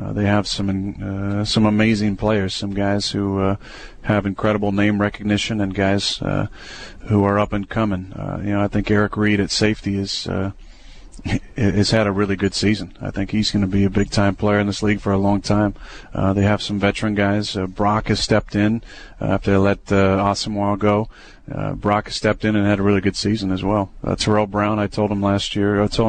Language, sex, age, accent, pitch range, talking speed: English, male, 40-59, American, 100-105 Hz, 225 wpm